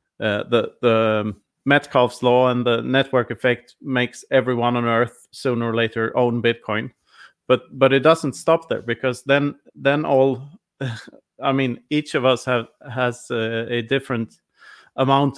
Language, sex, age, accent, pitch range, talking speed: English, male, 30-49, Norwegian, 120-135 Hz, 150 wpm